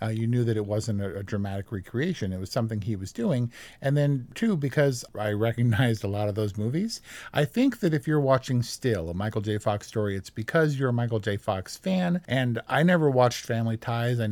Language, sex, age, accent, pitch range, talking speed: English, male, 50-69, American, 110-140 Hz, 225 wpm